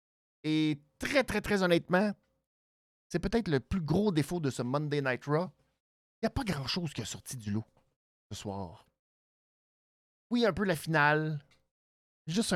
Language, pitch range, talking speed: French, 115-185 Hz, 160 wpm